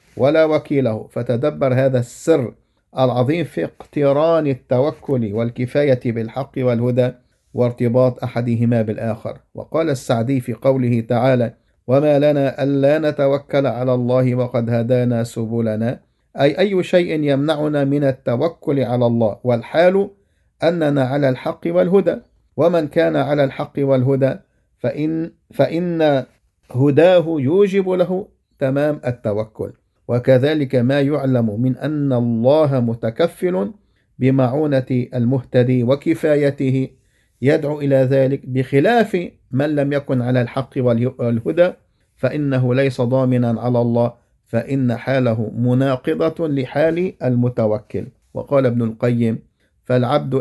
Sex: male